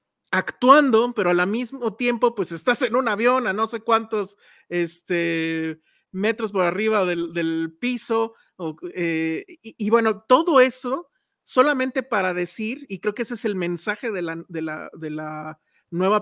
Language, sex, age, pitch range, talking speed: Spanish, male, 40-59, 175-220 Hz, 150 wpm